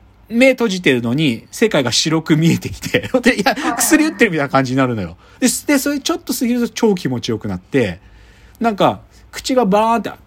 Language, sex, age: Japanese, male, 40-59